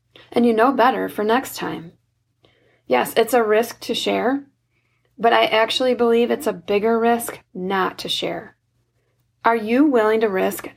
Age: 30-49